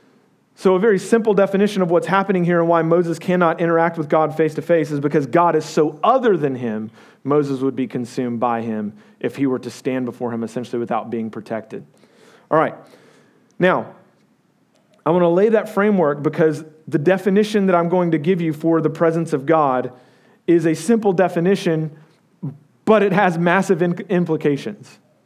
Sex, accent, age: male, American, 40-59